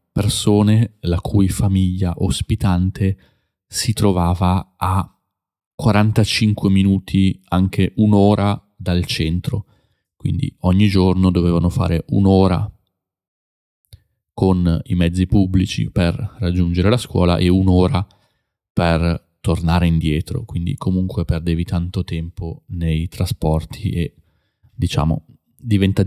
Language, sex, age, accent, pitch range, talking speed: Italian, male, 20-39, native, 90-105 Hz, 100 wpm